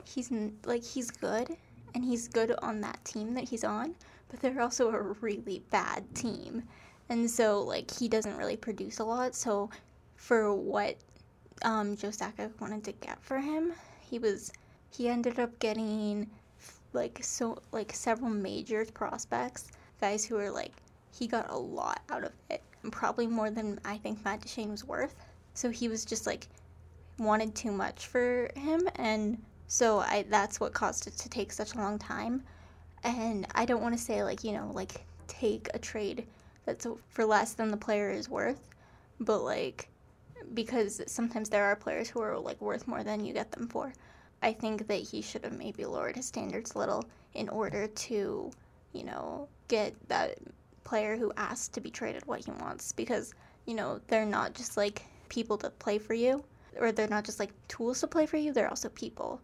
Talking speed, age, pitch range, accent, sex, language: 190 wpm, 10-29, 210-240 Hz, American, female, English